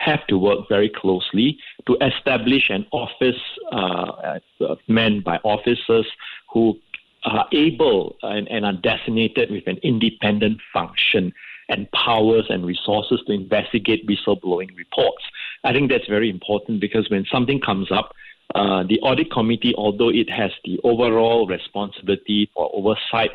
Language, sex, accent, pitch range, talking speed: English, male, Malaysian, 95-120 Hz, 140 wpm